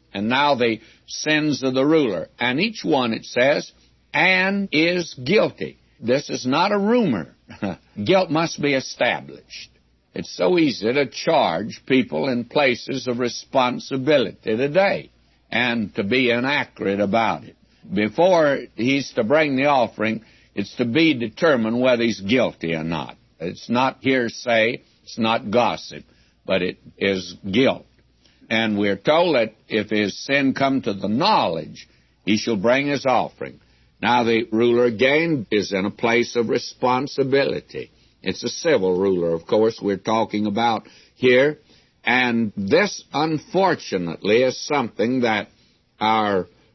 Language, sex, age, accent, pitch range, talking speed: English, male, 60-79, American, 105-140 Hz, 140 wpm